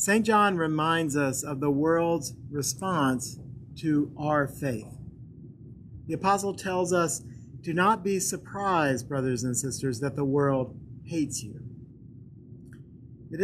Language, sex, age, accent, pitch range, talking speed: English, male, 40-59, American, 130-160 Hz, 125 wpm